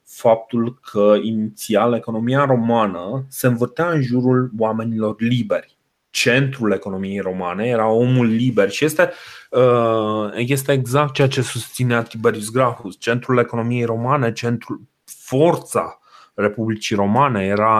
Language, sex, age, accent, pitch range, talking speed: Romanian, male, 30-49, native, 105-125 Hz, 115 wpm